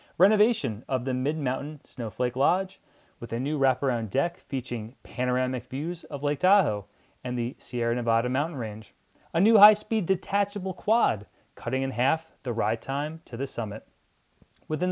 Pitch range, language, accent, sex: 120-170 Hz, English, American, male